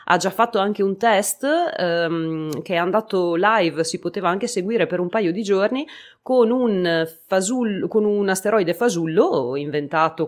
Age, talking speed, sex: 30-49, 145 wpm, female